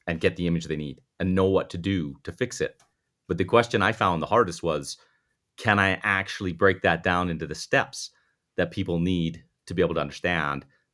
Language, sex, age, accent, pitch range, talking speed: English, male, 30-49, American, 85-100 Hz, 215 wpm